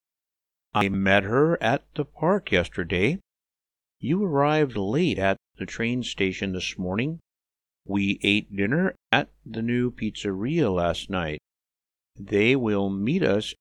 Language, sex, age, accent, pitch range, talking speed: English, male, 50-69, American, 90-130 Hz, 130 wpm